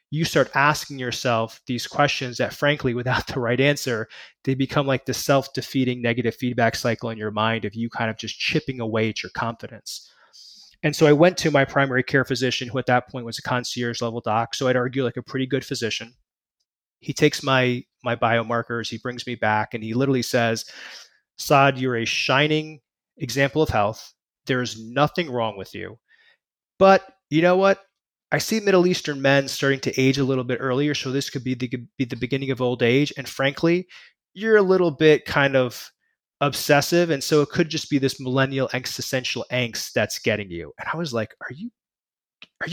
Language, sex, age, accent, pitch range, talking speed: English, male, 20-39, American, 120-145 Hz, 195 wpm